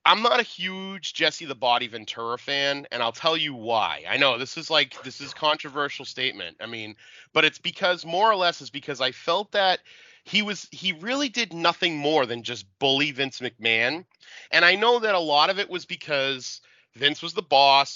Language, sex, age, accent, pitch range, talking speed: English, male, 30-49, American, 130-180 Hz, 205 wpm